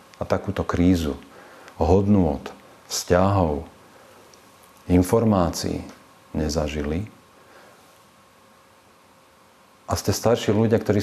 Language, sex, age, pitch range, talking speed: Slovak, male, 50-69, 80-100 Hz, 65 wpm